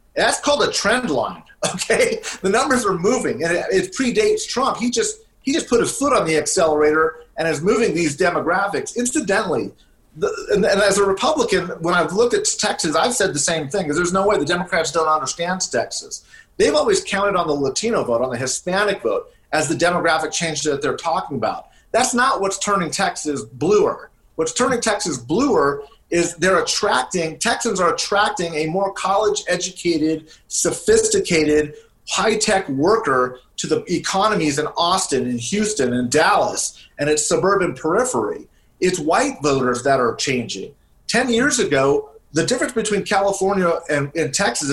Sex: male